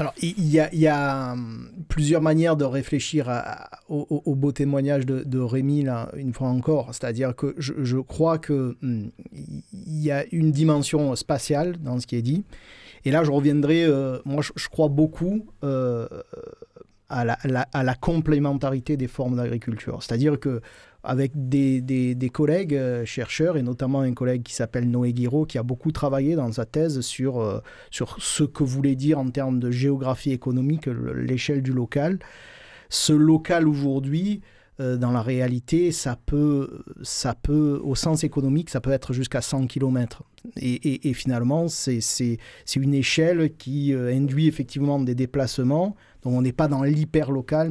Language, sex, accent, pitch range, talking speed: French, male, French, 125-155 Hz, 170 wpm